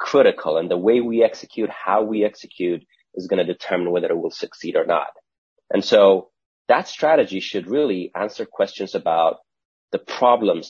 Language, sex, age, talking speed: English, male, 30-49, 170 wpm